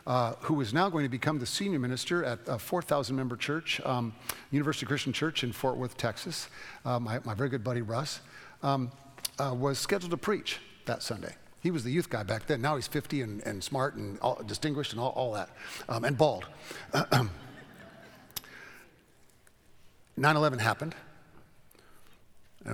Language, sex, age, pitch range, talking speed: English, male, 50-69, 110-140 Hz, 165 wpm